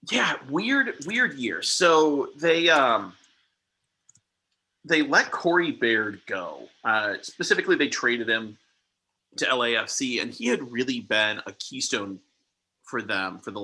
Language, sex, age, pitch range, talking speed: English, male, 30-49, 110-160 Hz, 130 wpm